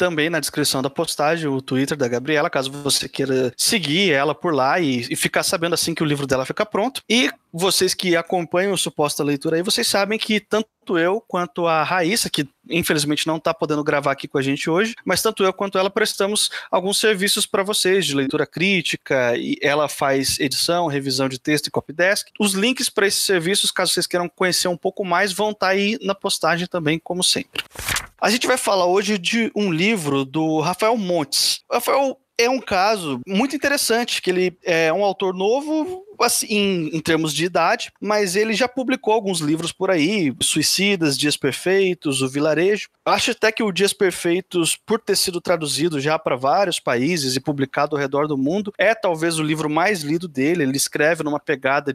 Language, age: Portuguese, 20-39